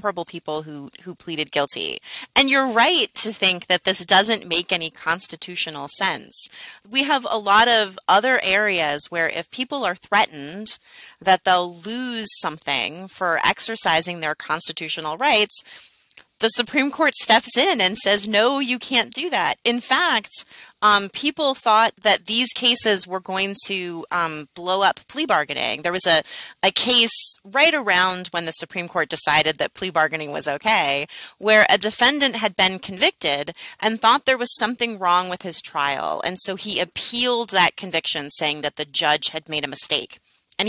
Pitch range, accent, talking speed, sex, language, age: 165-225 Hz, American, 165 wpm, female, English, 30-49